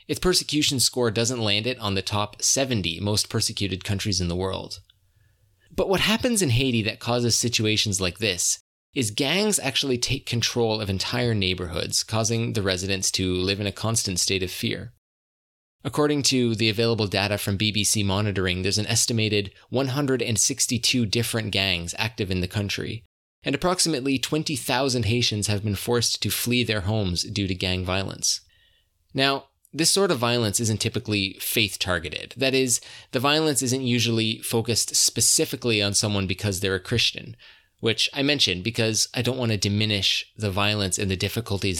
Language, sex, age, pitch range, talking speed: English, male, 20-39, 100-125 Hz, 165 wpm